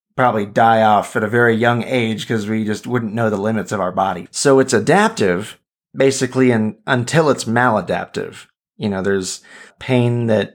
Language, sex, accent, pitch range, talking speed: English, male, American, 105-125 Hz, 175 wpm